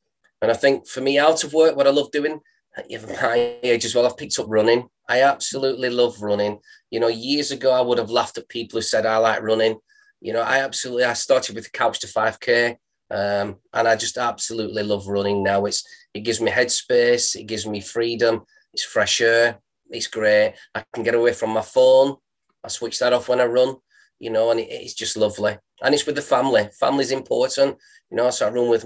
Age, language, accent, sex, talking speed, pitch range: 20-39, English, British, male, 225 wpm, 110-135 Hz